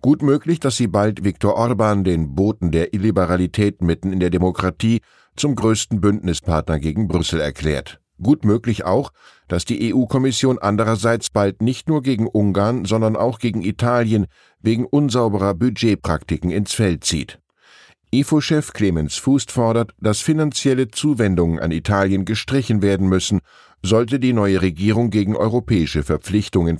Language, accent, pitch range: German, German, 95-120 Hz